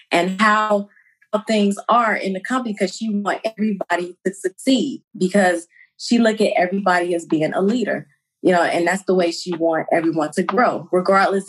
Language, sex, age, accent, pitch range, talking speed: English, female, 20-39, American, 190-245 Hz, 180 wpm